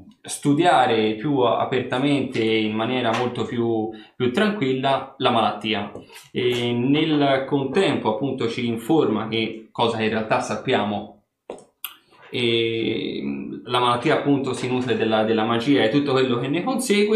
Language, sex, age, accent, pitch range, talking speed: Italian, male, 20-39, native, 110-140 Hz, 135 wpm